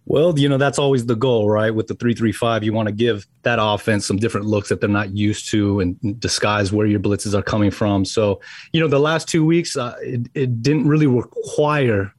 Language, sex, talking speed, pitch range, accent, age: English, male, 225 wpm, 105-140 Hz, American, 30-49